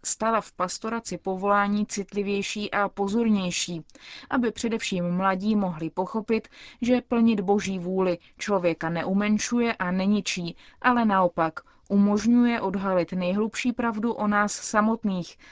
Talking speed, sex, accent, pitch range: 110 wpm, female, native, 180-220 Hz